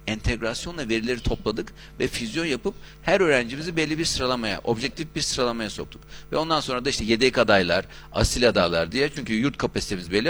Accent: native